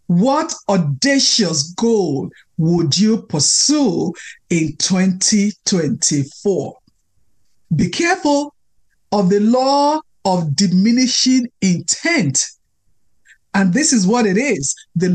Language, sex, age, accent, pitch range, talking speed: English, male, 50-69, Nigerian, 190-265 Hz, 90 wpm